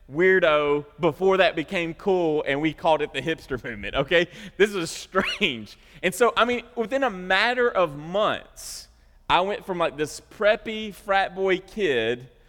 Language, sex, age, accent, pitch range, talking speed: English, male, 30-49, American, 145-195 Hz, 165 wpm